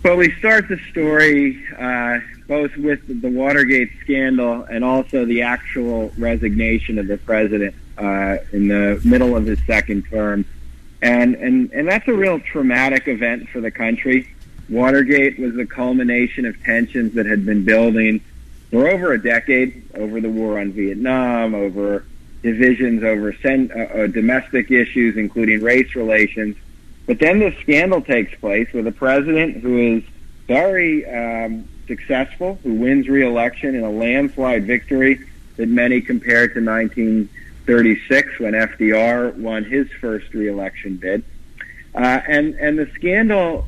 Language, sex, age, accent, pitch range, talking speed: English, male, 50-69, American, 110-135 Hz, 145 wpm